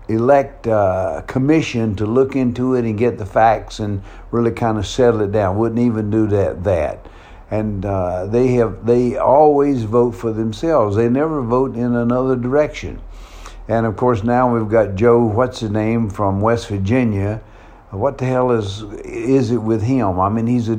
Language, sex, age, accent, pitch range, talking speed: English, male, 60-79, American, 100-120 Hz, 180 wpm